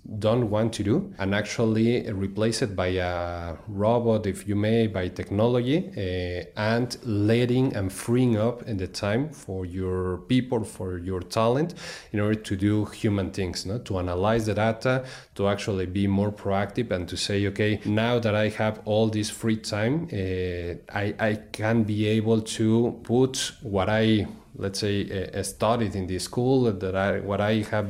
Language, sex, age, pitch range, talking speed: English, male, 30-49, 95-110 Hz, 170 wpm